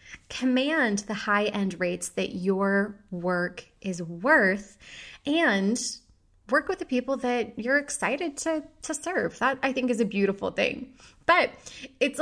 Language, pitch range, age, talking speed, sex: English, 200-270 Hz, 20-39, 145 wpm, female